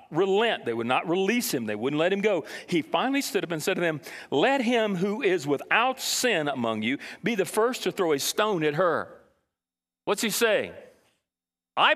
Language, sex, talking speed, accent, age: English, male, 200 wpm, American, 40-59